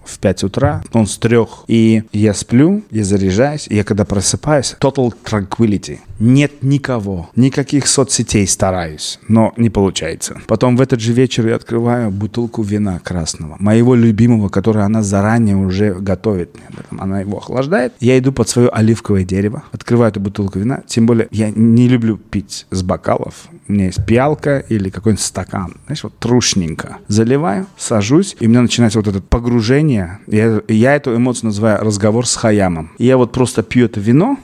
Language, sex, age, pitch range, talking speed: Russian, male, 30-49, 105-130 Hz, 165 wpm